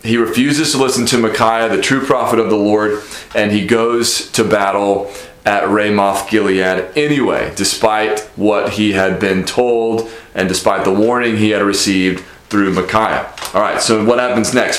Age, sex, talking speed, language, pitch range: 30-49, male, 165 wpm, English, 105-135 Hz